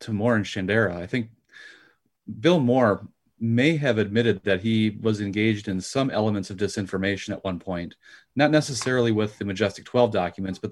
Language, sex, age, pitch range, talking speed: English, male, 30-49, 95-120 Hz, 175 wpm